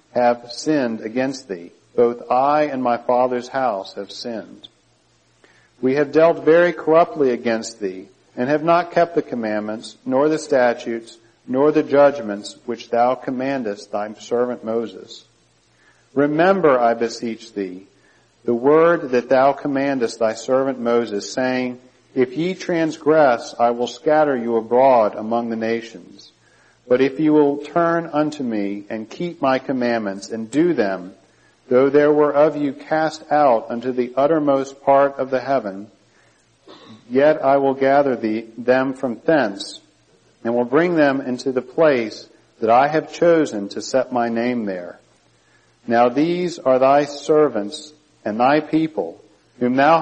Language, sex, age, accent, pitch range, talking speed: English, male, 50-69, American, 120-150 Hz, 145 wpm